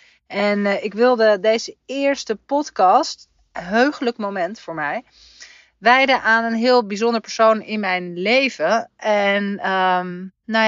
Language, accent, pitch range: Dutch, Dutch, 180-220 Hz